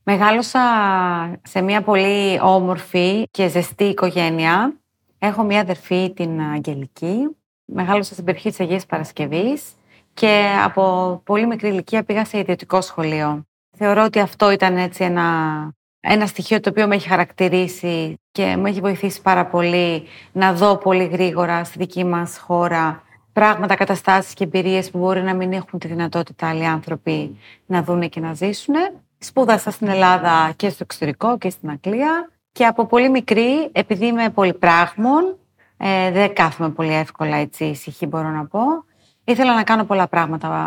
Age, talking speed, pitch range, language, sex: 30-49, 150 wpm, 170-220 Hz, Greek, female